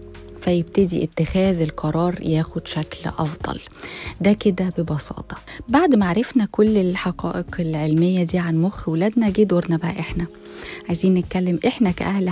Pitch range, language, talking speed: 165-215 Hz, Arabic, 125 wpm